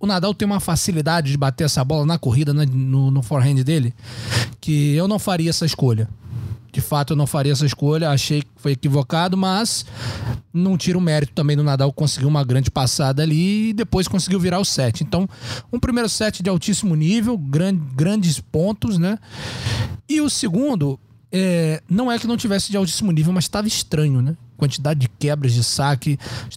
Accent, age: Brazilian, 20-39